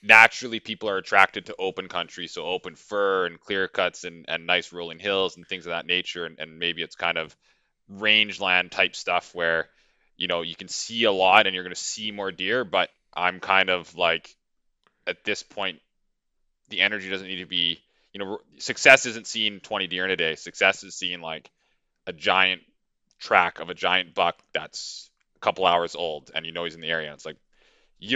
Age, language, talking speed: 20-39, English, 210 wpm